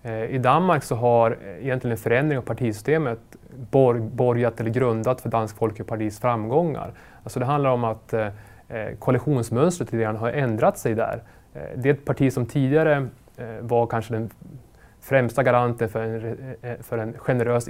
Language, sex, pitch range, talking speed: English, male, 110-130 Hz, 140 wpm